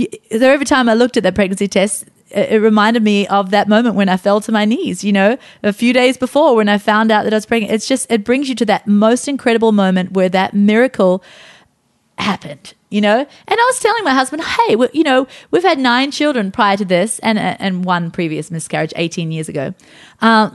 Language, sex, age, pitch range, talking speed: English, female, 30-49, 205-280 Hz, 220 wpm